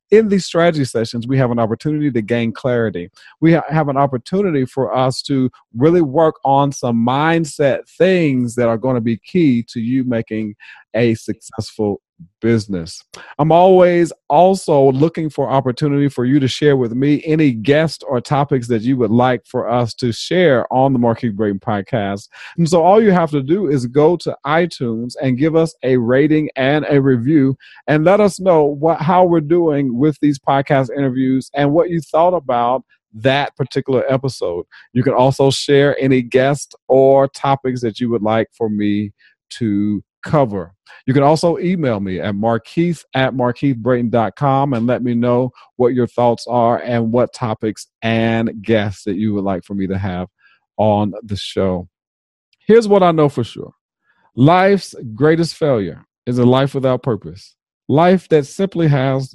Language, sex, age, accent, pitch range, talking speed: English, male, 40-59, American, 115-155 Hz, 175 wpm